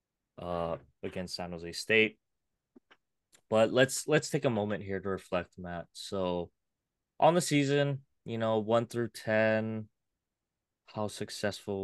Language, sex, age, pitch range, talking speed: English, male, 20-39, 95-110 Hz, 130 wpm